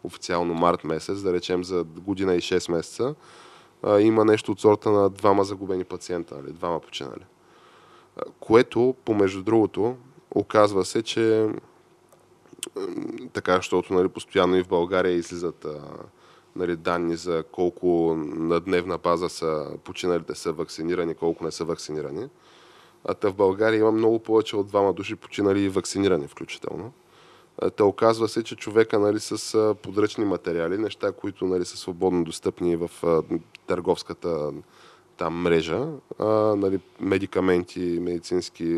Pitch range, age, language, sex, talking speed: 85-110 Hz, 20-39, Bulgarian, male, 130 wpm